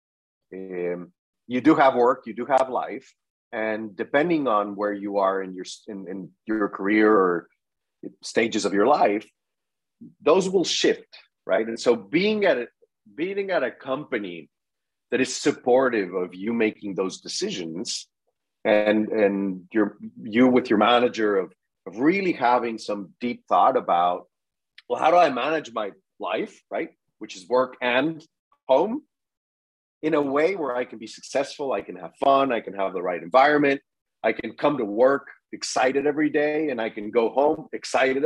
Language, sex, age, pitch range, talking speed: English, male, 30-49, 105-140 Hz, 165 wpm